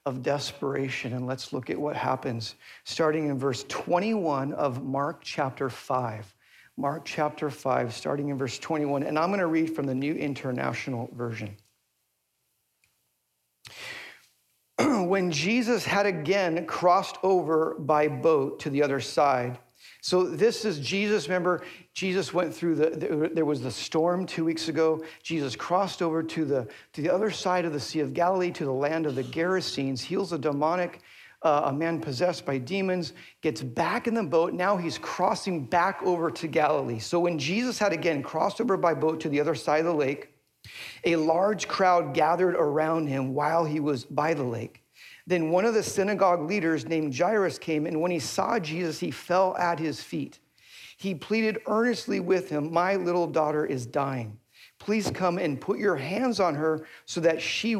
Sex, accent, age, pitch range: male, American, 50-69, 140-180 Hz